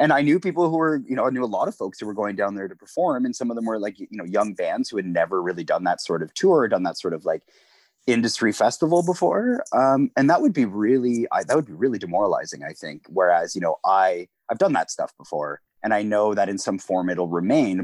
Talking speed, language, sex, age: 275 wpm, English, male, 30-49